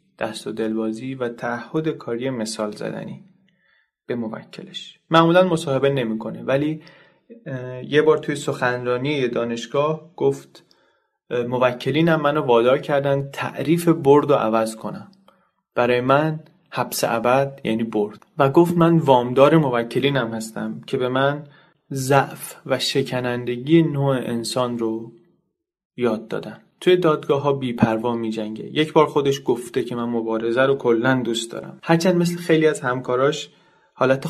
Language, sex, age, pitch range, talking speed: Persian, male, 30-49, 115-150 Hz, 135 wpm